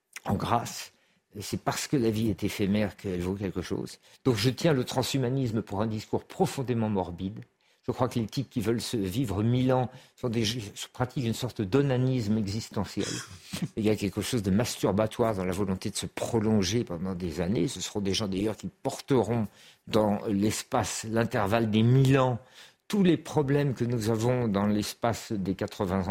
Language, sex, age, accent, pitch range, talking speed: French, male, 50-69, French, 105-125 Hz, 190 wpm